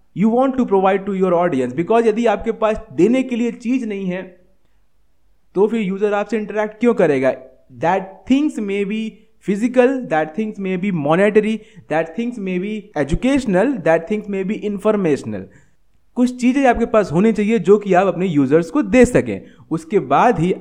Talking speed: 180 wpm